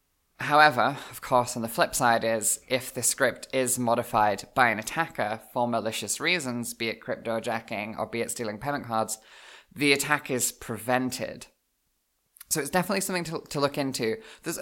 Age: 20-39